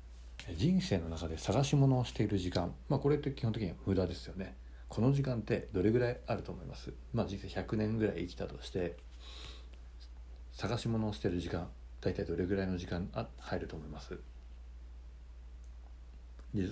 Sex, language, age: male, Japanese, 40-59